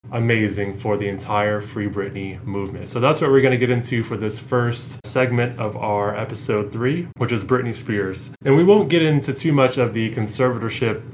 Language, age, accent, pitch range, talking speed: English, 20-39, American, 105-130 Hz, 200 wpm